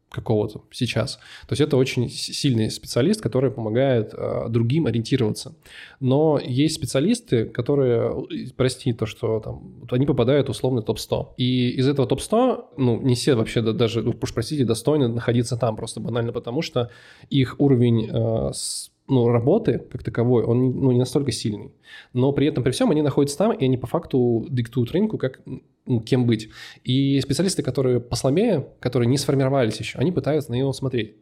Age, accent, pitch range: 20-39, native, 115-135 Hz